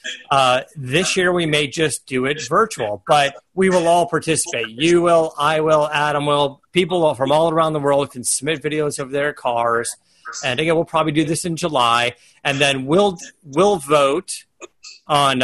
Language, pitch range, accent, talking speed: English, 125-165 Hz, American, 180 wpm